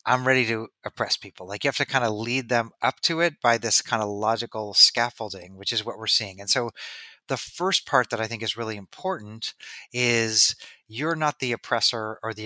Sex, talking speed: male, 215 wpm